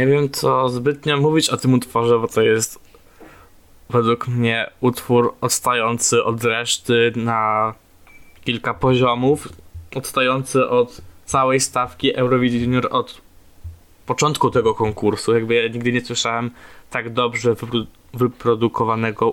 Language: Polish